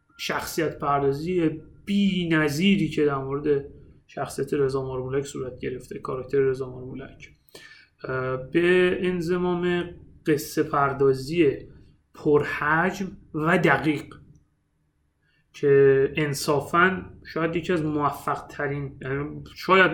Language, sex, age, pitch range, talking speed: Persian, male, 30-49, 135-165 Hz, 90 wpm